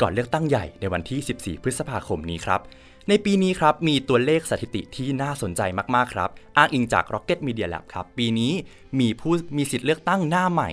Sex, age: male, 20-39